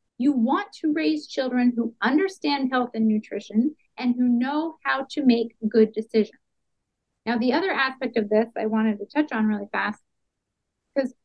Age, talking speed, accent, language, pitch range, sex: 30-49, 170 wpm, American, English, 220-275 Hz, female